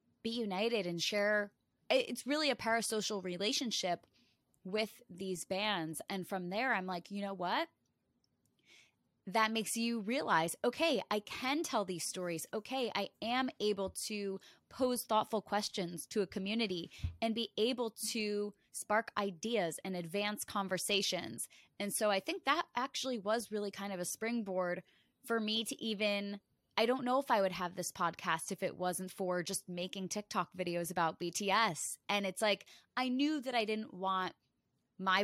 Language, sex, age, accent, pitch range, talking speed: English, female, 20-39, American, 180-225 Hz, 160 wpm